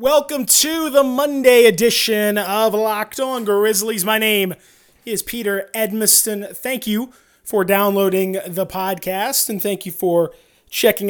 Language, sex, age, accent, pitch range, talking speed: English, male, 20-39, American, 175-220 Hz, 135 wpm